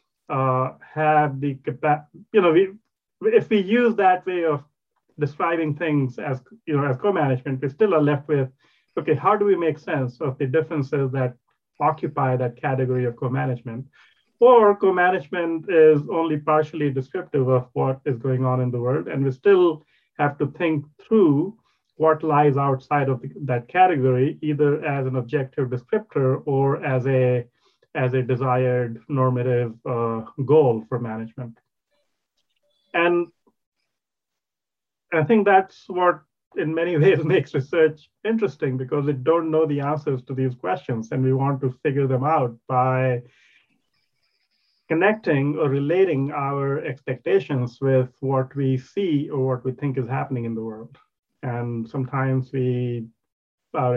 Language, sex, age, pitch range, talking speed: English, male, 30-49, 130-160 Hz, 145 wpm